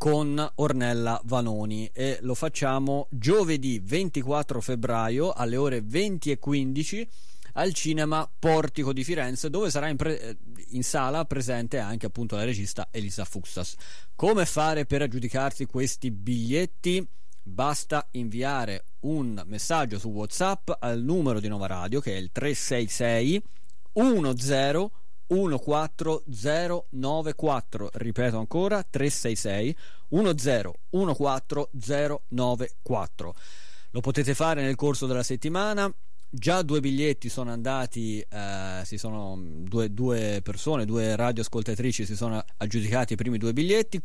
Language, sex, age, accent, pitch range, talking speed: Italian, male, 30-49, native, 115-150 Hz, 115 wpm